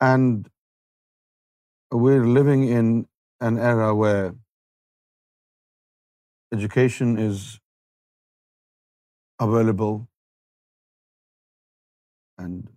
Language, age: Urdu, 50-69